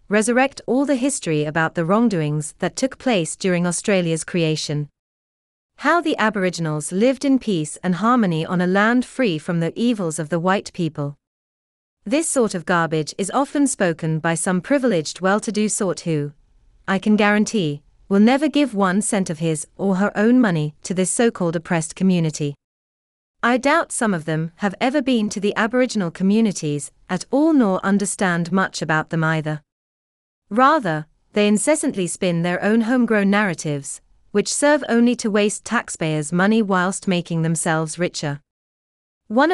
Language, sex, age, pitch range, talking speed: English, female, 30-49, 160-220 Hz, 160 wpm